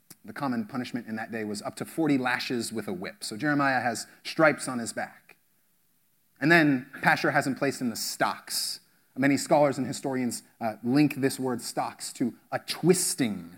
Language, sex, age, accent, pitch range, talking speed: English, male, 30-49, American, 115-160 Hz, 185 wpm